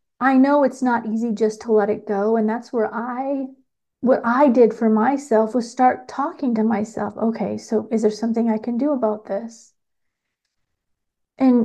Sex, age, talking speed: female, 40-59, 180 wpm